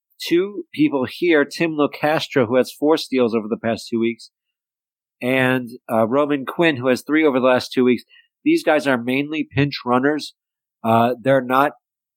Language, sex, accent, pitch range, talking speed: English, male, American, 115-150 Hz, 175 wpm